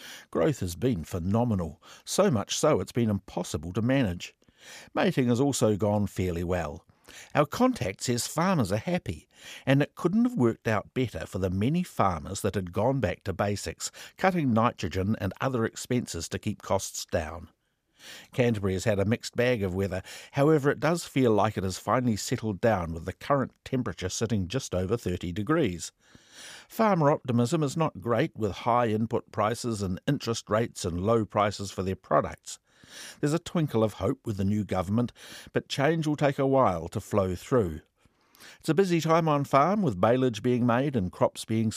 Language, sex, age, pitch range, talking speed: English, male, 60-79, 95-140 Hz, 180 wpm